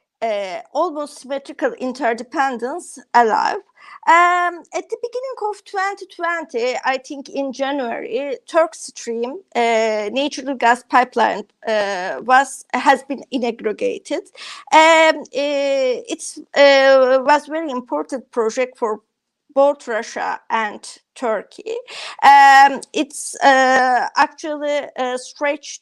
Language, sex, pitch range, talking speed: Turkish, female, 240-325 Hz, 100 wpm